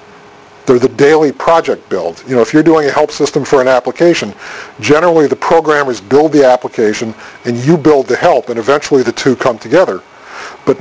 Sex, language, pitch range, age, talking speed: male, English, 130-160 Hz, 50-69, 190 wpm